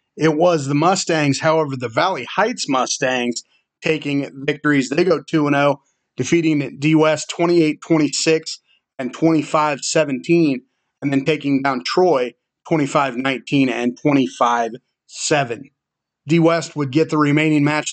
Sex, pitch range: male, 135-155 Hz